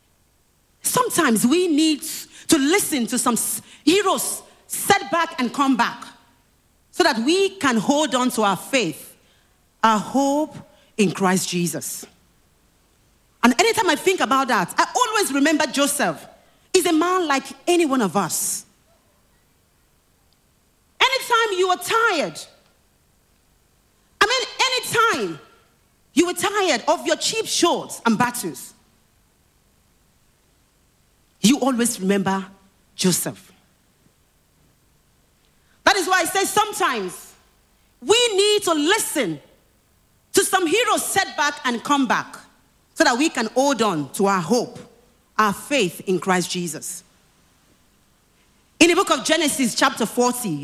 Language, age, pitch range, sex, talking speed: English, 40-59, 220-365 Hz, female, 125 wpm